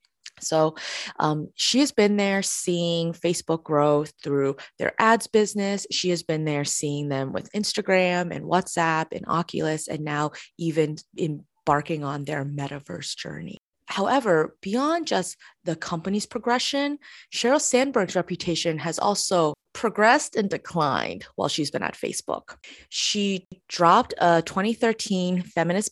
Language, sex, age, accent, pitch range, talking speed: English, female, 20-39, American, 150-190 Hz, 130 wpm